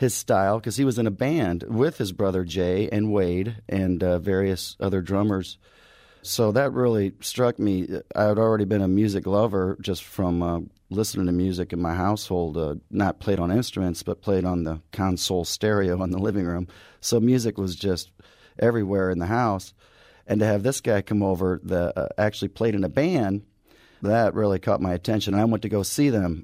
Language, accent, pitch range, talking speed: English, American, 95-110 Hz, 200 wpm